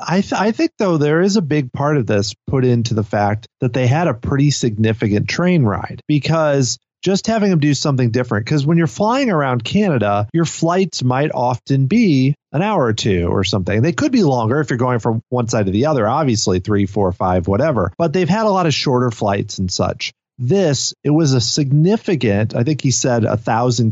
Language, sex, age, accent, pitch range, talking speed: English, male, 30-49, American, 120-170 Hz, 220 wpm